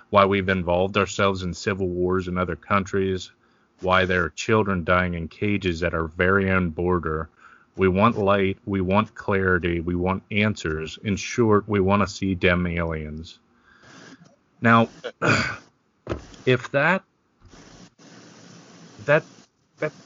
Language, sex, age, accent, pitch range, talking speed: English, male, 40-59, American, 90-110 Hz, 130 wpm